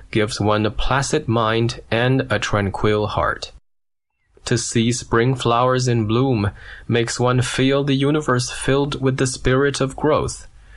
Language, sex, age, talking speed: English, male, 20-39, 145 wpm